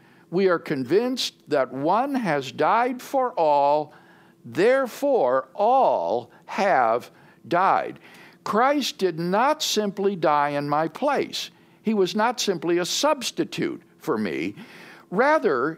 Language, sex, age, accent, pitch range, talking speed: English, male, 60-79, American, 160-235 Hz, 115 wpm